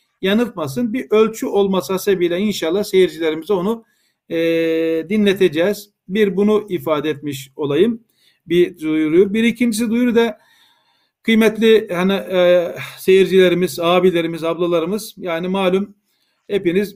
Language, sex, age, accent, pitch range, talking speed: Turkish, male, 50-69, native, 165-205 Hz, 105 wpm